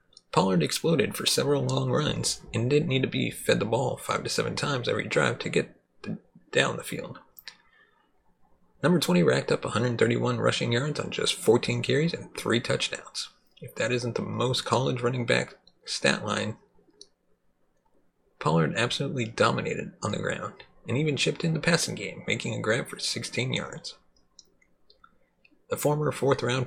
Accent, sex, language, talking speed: American, male, English, 160 wpm